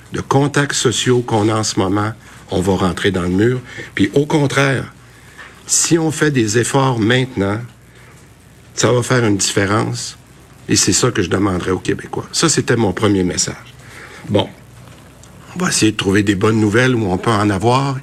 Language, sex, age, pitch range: French, male, 60-79, 100-125 Hz